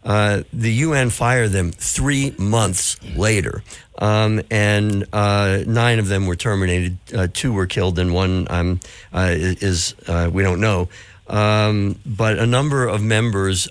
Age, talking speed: 60-79, 160 wpm